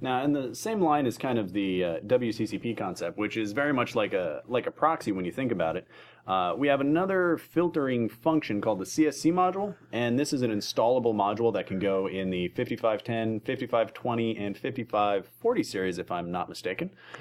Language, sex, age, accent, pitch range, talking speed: English, male, 30-49, American, 105-140 Hz, 195 wpm